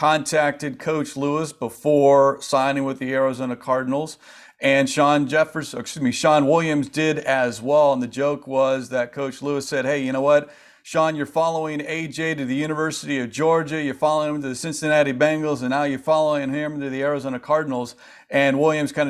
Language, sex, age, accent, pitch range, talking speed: English, male, 40-59, American, 135-160 Hz, 185 wpm